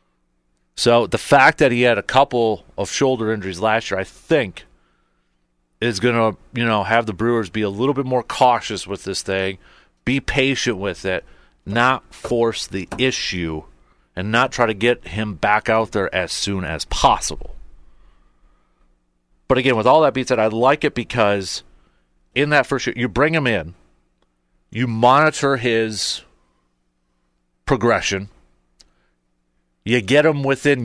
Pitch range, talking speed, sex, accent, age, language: 85-130 Hz, 155 wpm, male, American, 40-59, English